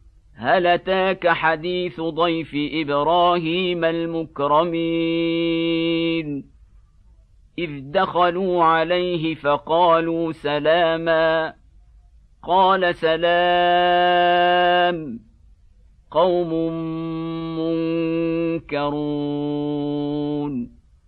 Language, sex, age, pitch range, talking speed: Arabic, male, 50-69, 145-175 Hz, 40 wpm